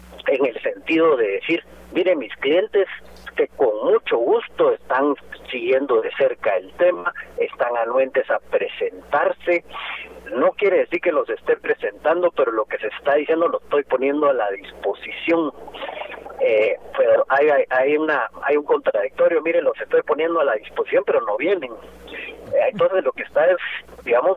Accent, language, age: Mexican, Spanish, 40-59